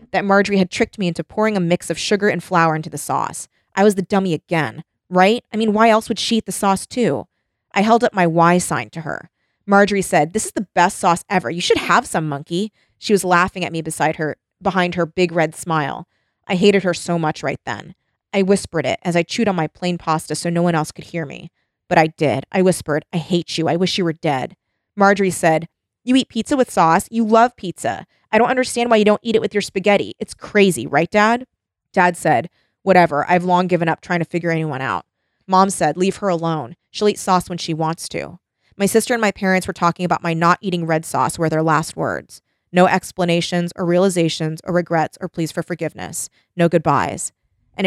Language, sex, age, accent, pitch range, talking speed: English, female, 20-39, American, 165-195 Hz, 225 wpm